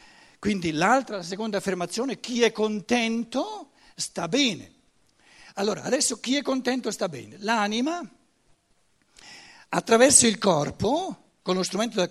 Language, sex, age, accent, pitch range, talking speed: Italian, male, 60-79, native, 185-240 Hz, 125 wpm